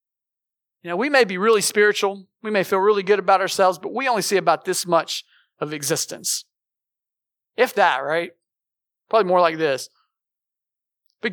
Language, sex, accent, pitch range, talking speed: English, male, American, 150-225 Hz, 165 wpm